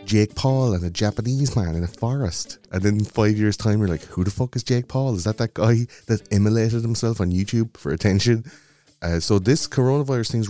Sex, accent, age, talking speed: male, Irish, 30-49, 215 wpm